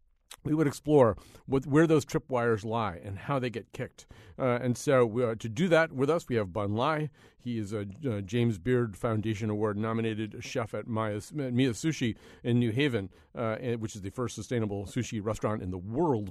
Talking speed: 185 wpm